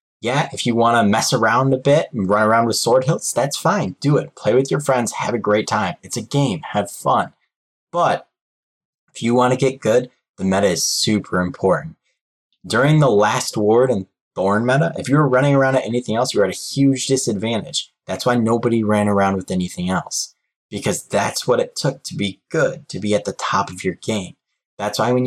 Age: 20-39